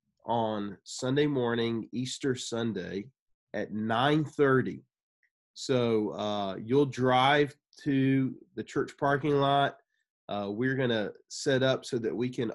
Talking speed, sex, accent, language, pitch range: 120 wpm, male, American, English, 110-140 Hz